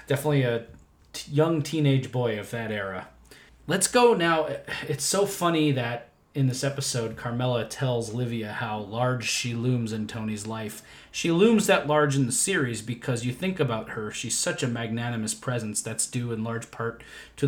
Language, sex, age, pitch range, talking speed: English, male, 30-49, 115-150 Hz, 175 wpm